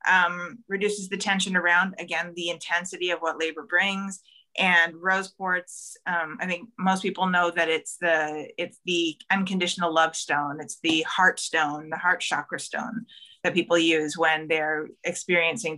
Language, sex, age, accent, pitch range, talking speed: English, female, 30-49, American, 170-200 Hz, 165 wpm